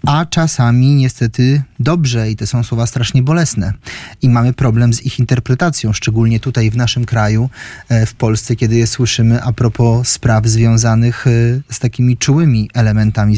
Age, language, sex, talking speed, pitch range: 30-49, Polish, male, 155 wpm, 115-140 Hz